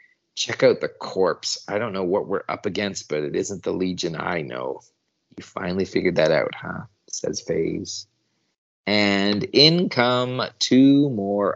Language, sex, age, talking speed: English, male, 30-49, 160 wpm